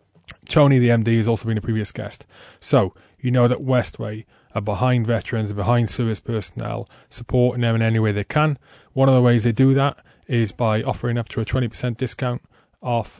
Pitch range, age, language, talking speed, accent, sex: 115-140 Hz, 20-39, English, 200 wpm, British, male